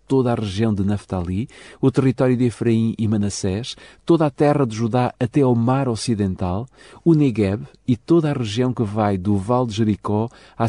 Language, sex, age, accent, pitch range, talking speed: Portuguese, male, 50-69, Portuguese, 105-140 Hz, 185 wpm